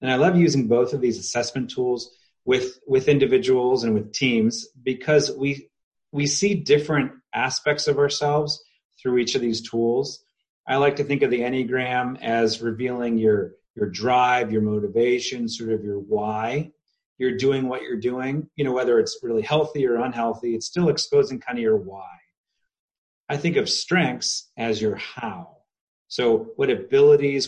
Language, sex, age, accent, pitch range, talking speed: English, male, 30-49, American, 115-155 Hz, 165 wpm